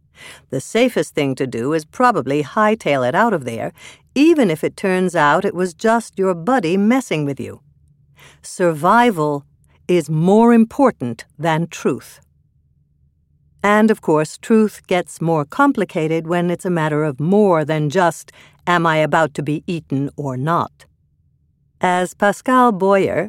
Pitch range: 150-185 Hz